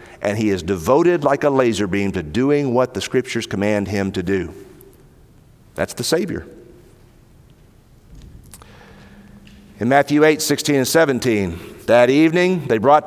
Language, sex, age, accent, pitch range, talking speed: English, male, 50-69, American, 105-150 Hz, 140 wpm